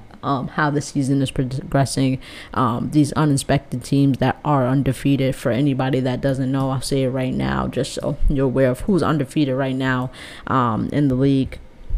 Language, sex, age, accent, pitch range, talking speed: English, female, 20-39, American, 130-150 Hz, 180 wpm